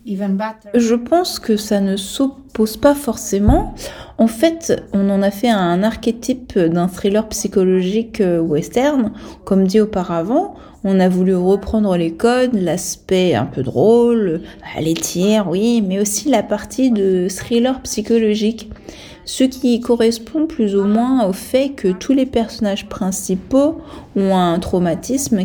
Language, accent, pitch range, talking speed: French, French, 180-235 Hz, 140 wpm